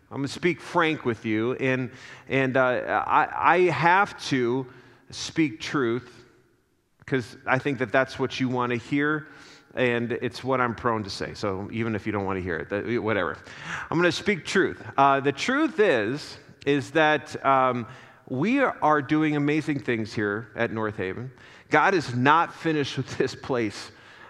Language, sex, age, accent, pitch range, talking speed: English, male, 40-59, American, 120-150 Hz, 175 wpm